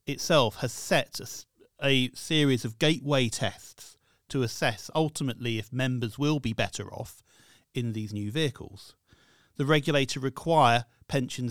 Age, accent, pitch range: 40-59, British, 115-145 Hz